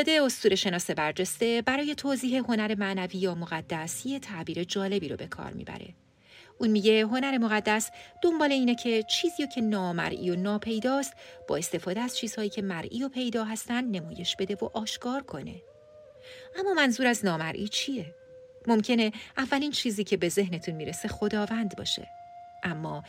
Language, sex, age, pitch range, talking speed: Persian, female, 40-59, 185-250 Hz, 150 wpm